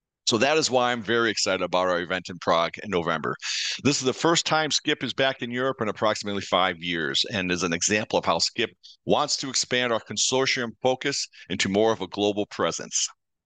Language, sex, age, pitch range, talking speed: English, male, 50-69, 100-130 Hz, 210 wpm